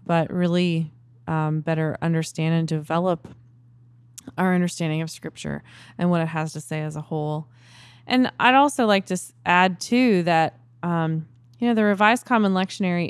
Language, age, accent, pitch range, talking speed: English, 20-39, American, 130-185 Hz, 160 wpm